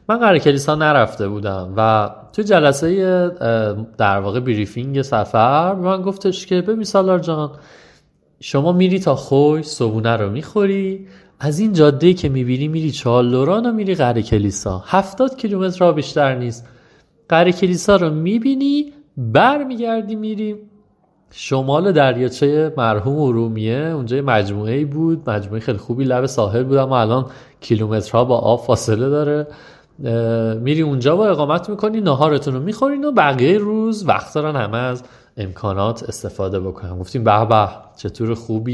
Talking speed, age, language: 140 wpm, 30-49, Persian